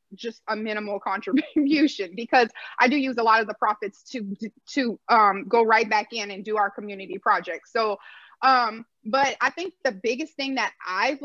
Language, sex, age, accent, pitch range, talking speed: English, female, 30-49, American, 220-290 Hz, 185 wpm